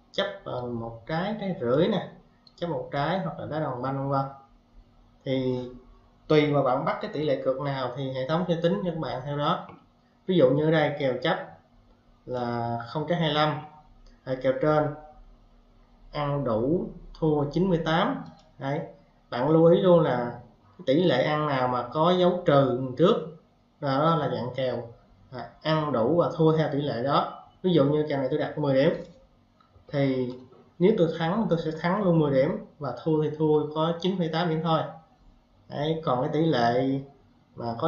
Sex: male